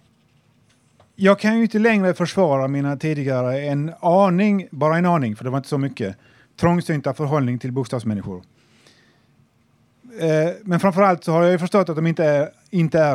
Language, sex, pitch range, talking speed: Swedish, male, 125-180 Hz, 155 wpm